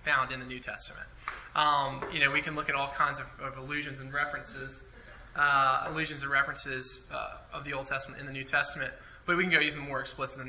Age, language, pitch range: 20-39, English, 130-150 Hz